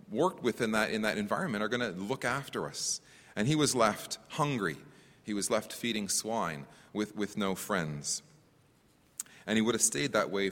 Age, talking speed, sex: 30-49, 195 wpm, male